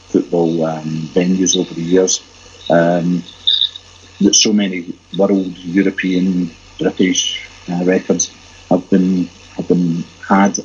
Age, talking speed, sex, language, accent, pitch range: 50-69, 115 wpm, male, English, British, 85-100 Hz